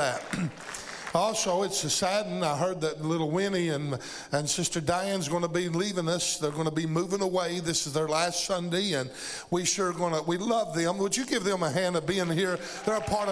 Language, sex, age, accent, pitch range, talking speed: English, male, 50-69, American, 170-205 Hz, 230 wpm